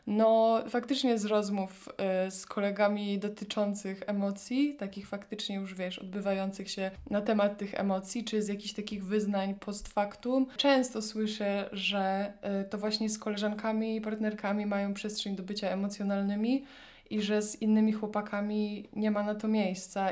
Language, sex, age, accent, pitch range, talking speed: Polish, female, 20-39, native, 200-220 Hz, 145 wpm